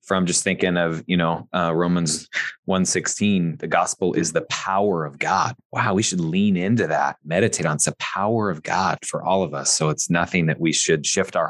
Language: English